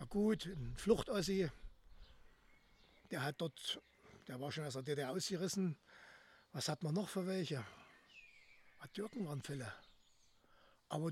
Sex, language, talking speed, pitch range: male, German, 125 wpm, 125-190 Hz